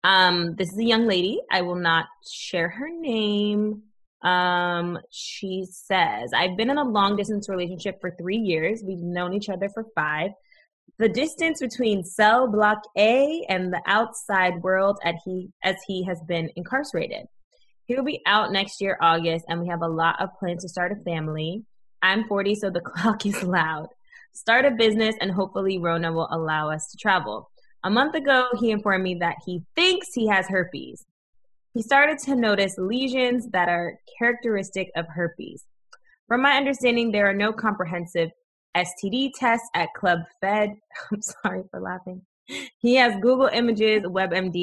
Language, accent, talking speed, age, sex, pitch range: English, American, 170 wpm, 20-39, female, 170-220 Hz